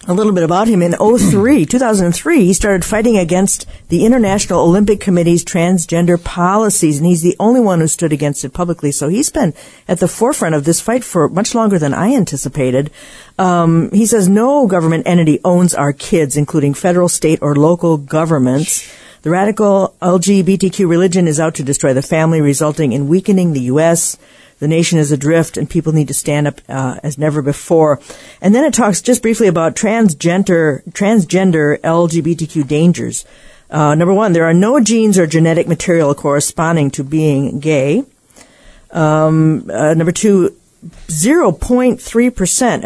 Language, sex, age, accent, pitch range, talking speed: English, female, 50-69, American, 155-195 Hz, 160 wpm